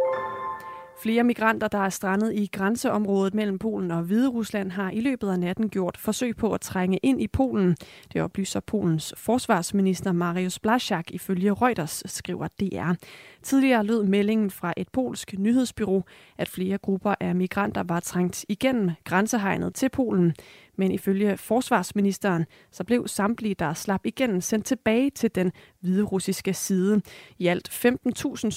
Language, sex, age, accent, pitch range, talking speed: Danish, female, 30-49, native, 180-220 Hz, 145 wpm